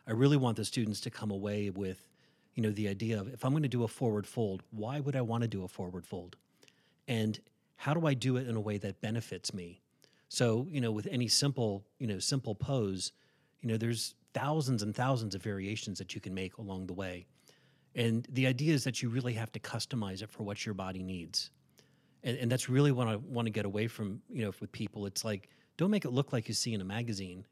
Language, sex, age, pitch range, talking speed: English, male, 40-59, 105-135 Hz, 240 wpm